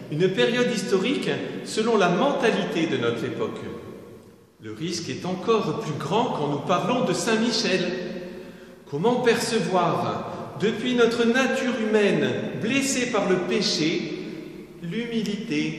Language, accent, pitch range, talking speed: French, French, 160-215 Hz, 120 wpm